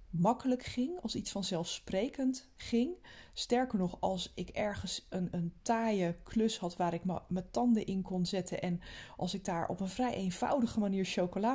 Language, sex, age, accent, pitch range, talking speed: Dutch, female, 20-39, Dutch, 175-230 Hz, 175 wpm